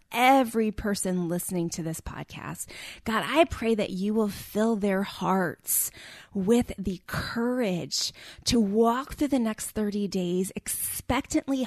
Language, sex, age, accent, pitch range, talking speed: English, female, 20-39, American, 180-235 Hz, 135 wpm